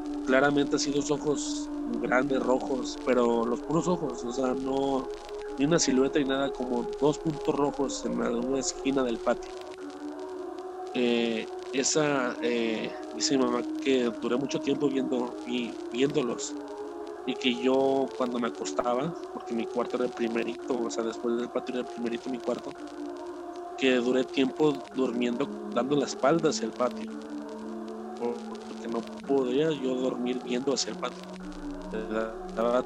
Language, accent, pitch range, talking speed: Spanish, Mexican, 125-160 Hz, 150 wpm